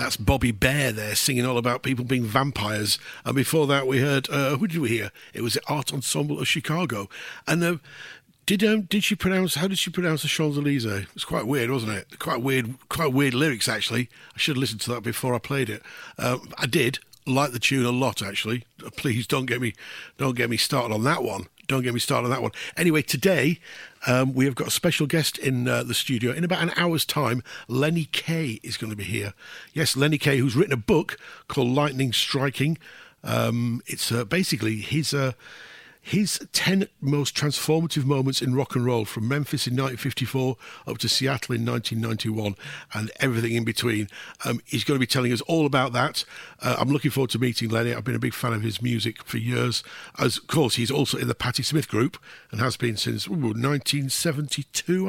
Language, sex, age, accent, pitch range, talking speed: English, male, 50-69, British, 120-150 Hz, 215 wpm